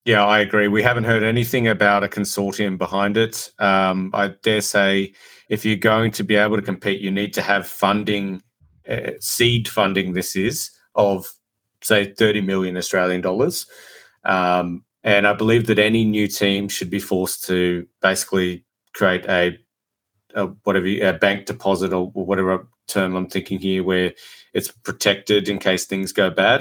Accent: Australian